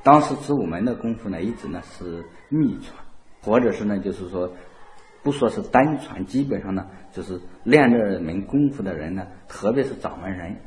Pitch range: 95-155 Hz